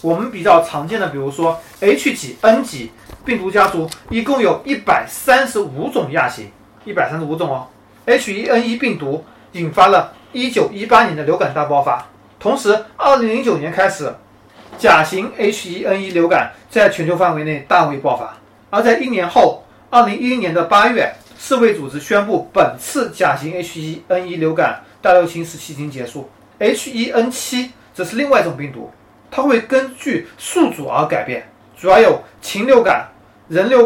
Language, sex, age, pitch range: Chinese, male, 30-49, 160-240 Hz